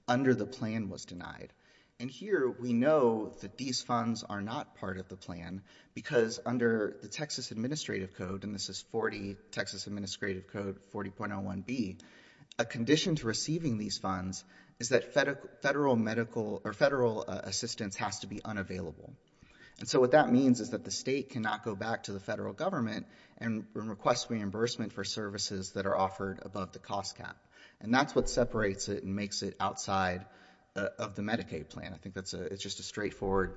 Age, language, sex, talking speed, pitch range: 30-49, English, male, 175 wpm, 95-115 Hz